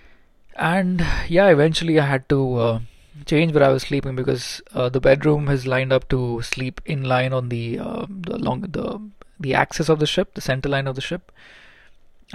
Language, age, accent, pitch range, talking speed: English, 20-39, Indian, 125-145 Hz, 200 wpm